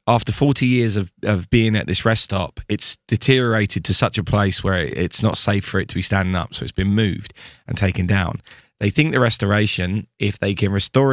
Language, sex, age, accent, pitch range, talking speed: English, male, 20-39, British, 95-120 Hz, 220 wpm